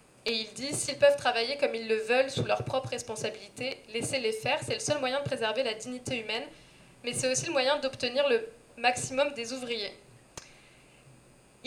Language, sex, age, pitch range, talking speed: French, female, 20-39, 230-275 Hz, 195 wpm